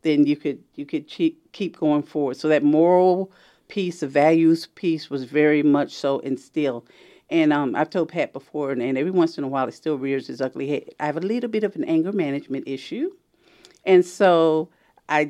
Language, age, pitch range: English, 50-69, 145-175 Hz